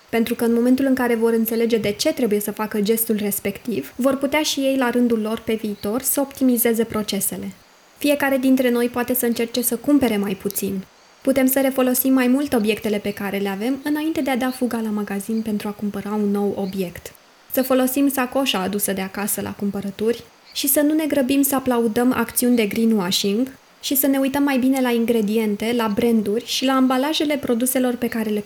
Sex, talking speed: female, 200 wpm